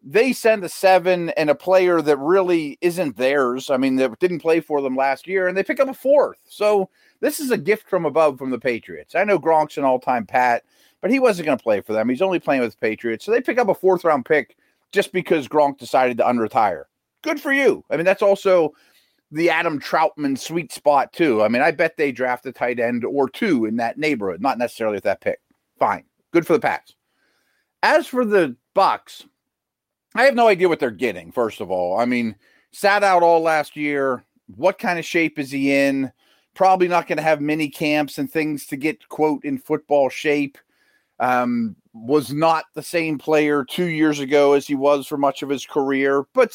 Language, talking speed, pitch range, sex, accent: English, 215 wpm, 135-190 Hz, male, American